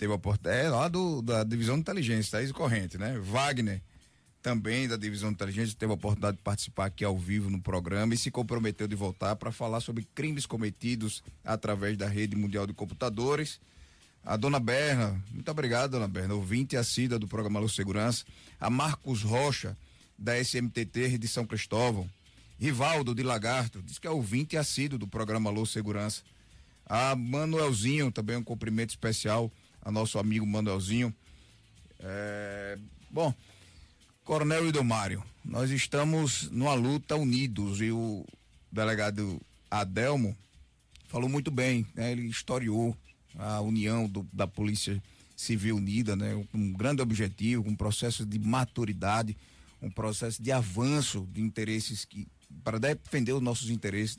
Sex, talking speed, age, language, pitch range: male, 150 wpm, 20-39, Portuguese, 105-125 Hz